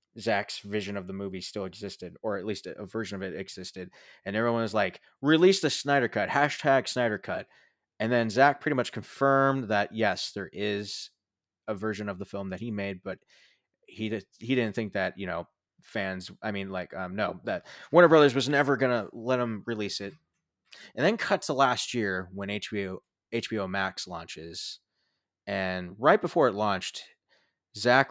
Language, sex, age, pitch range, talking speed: English, male, 20-39, 100-135 Hz, 180 wpm